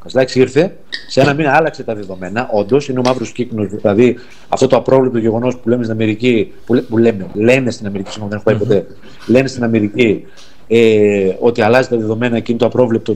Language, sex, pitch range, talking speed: Greek, male, 115-170 Hz, 175 wpm